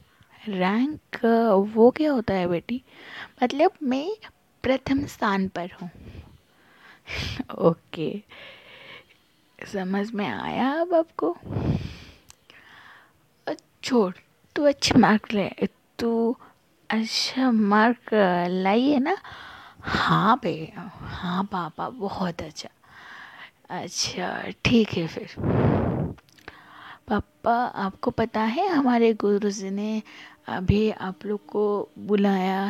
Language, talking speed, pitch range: Hindi, 75 wpm, 195-255 Hz